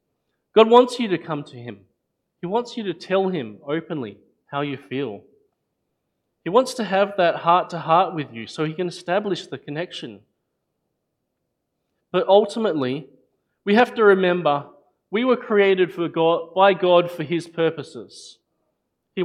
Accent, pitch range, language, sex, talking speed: Australian, 150-200 Hz, English, male, 155 wpm